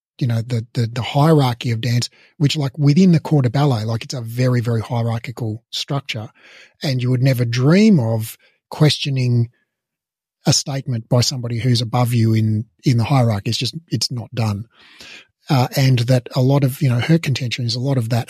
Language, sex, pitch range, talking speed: English, male, 120-145 Hz, 195 wpm